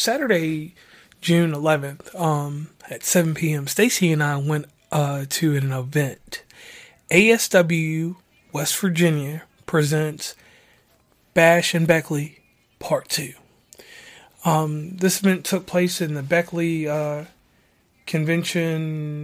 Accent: American